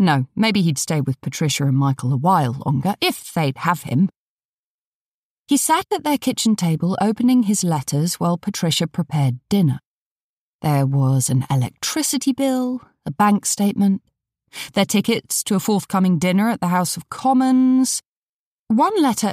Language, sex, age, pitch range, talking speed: English, female, 30-49, 155-230 Hz, 150 wpm